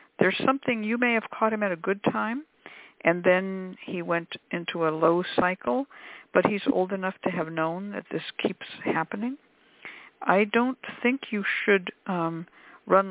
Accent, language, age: American, English, 60-79